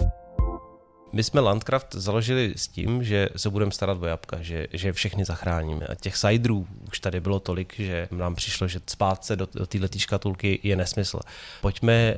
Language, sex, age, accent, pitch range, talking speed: Czech, male, 30-49, native, 95-115 Hz, 170 wpm